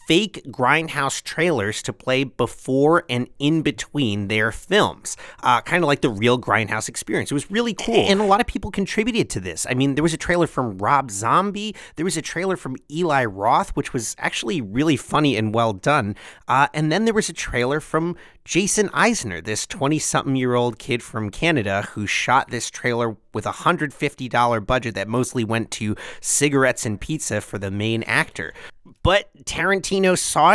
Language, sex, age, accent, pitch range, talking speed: English, male, 30-49, American, 120-155 Hz, 180 wpm